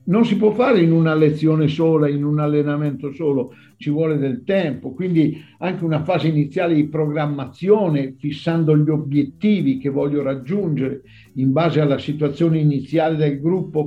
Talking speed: 155 wpm